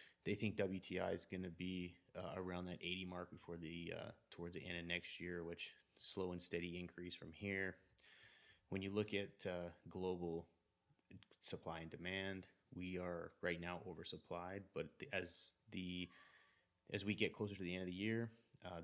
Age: 30-49